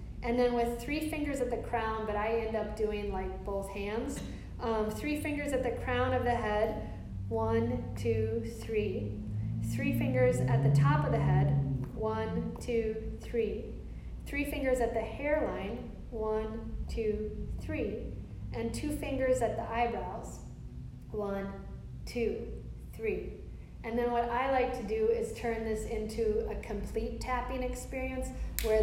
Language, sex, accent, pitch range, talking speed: English, female, American, 195-230 Hz, 150 wpm